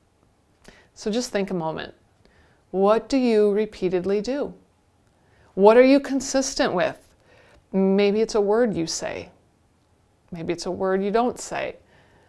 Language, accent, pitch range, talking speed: English, American, 180-230 Hz, 135 wpm